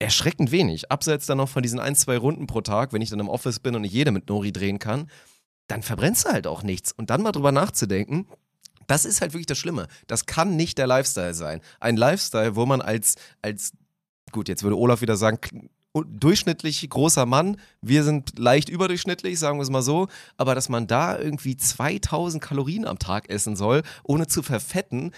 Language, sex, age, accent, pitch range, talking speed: German, male, 30-49, German, 115-150 Hz, 205 wpm